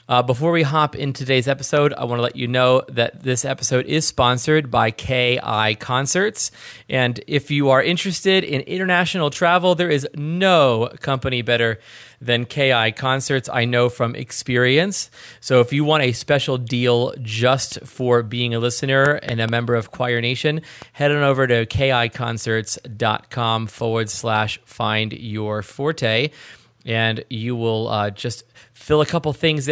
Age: 30-49